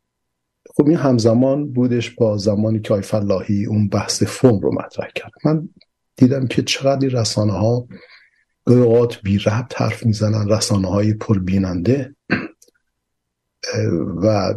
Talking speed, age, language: 105 wpm, 50-69, Persian